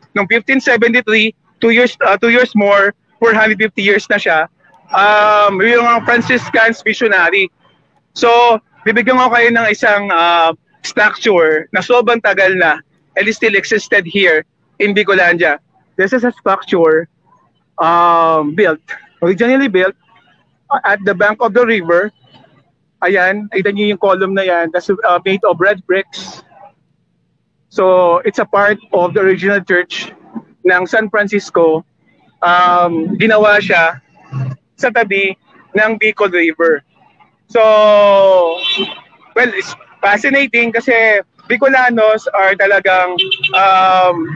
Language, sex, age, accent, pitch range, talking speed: English, male, 20-39, Filipino, 180-220 Hz, 120 wpm